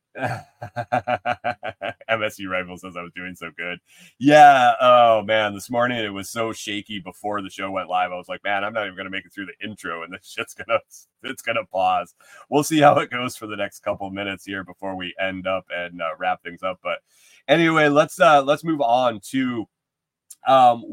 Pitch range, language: 95-125 Hz, English